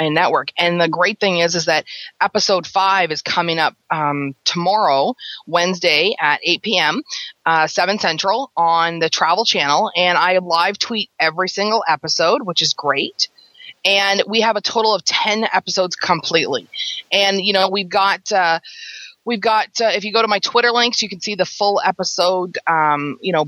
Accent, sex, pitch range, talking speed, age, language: American, female, 165-210 Hz, 180 wpm, 30-49, English